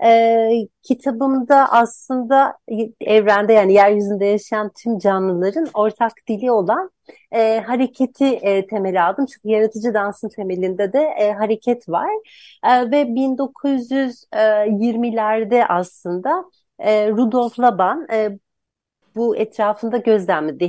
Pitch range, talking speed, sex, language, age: 200-245 Hz, 105 wpm, female, Turkish, 40-59